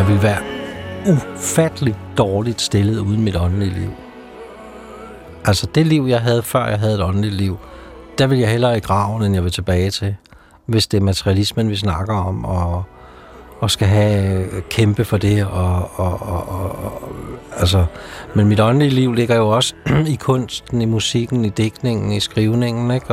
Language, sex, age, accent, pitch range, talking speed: Danish, male, 60-79, native, 95-125 Hz, 175 wpm